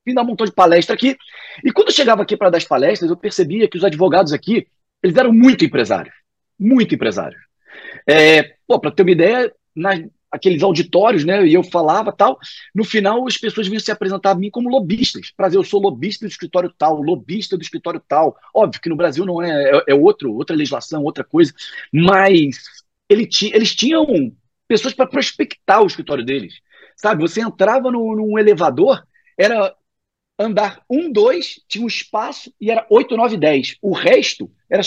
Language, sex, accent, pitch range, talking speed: Portuguese, male, Brazilian, 180-250 Hz, 180 wpm